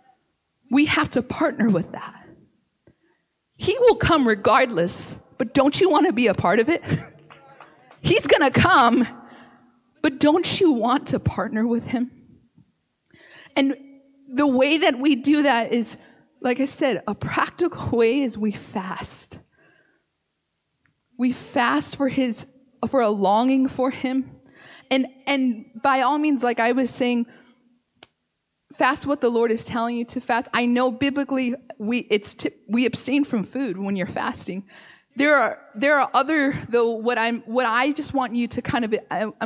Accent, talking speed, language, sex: American, 165 wpm, English, female